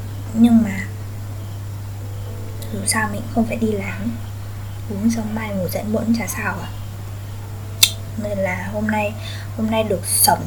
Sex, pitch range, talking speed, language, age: female, 100-105 Hz, 150 wpm, Vietnamese, 10-29